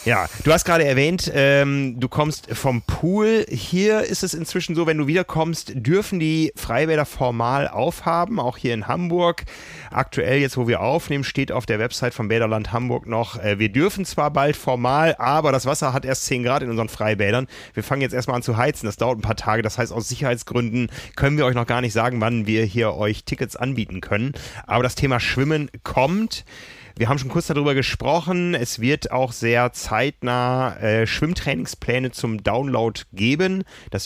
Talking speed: 190 wpm